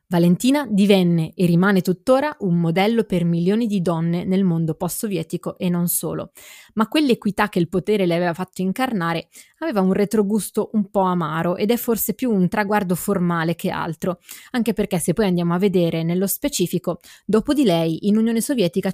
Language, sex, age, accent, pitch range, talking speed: Italian, female, 20-39, native, 175-220 Hz, 175 wpm